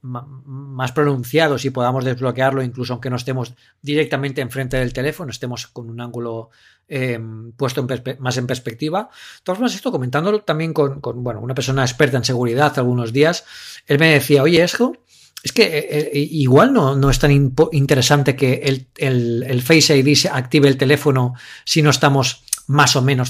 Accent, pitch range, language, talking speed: Spanish, 125-150 Hz, English, 190 wpm